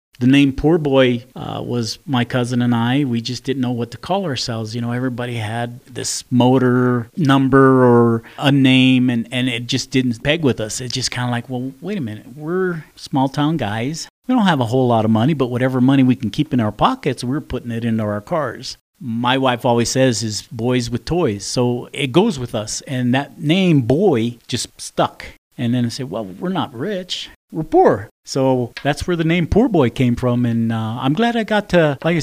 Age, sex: 40-59, male